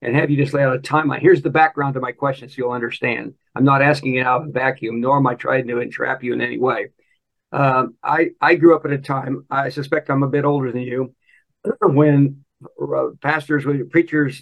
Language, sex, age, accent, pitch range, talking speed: English, male, 60-79, American, 135-155 Hz, 225 wpm